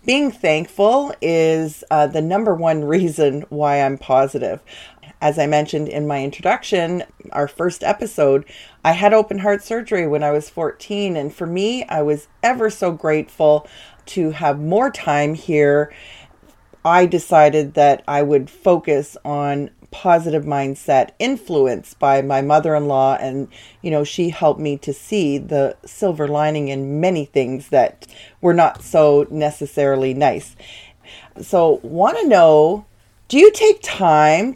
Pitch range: 145-190 Hz